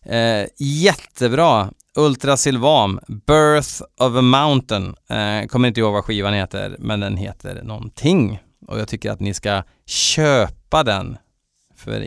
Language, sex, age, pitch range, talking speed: Swedish, male, 30-49, 105-140 Hz, 140 wpm